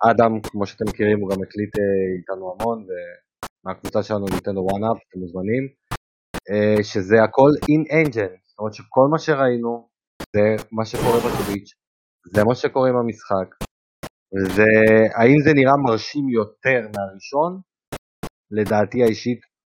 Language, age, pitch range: Hebrew, 30-49, 100-125 Hz